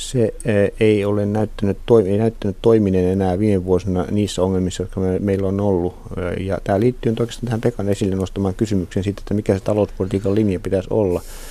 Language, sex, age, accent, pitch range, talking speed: Finnish, male, 50-69, native, 95-110 Hz, 175 wpm